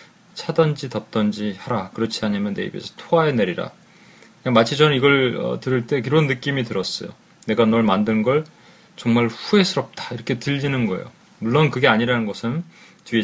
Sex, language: male, Korean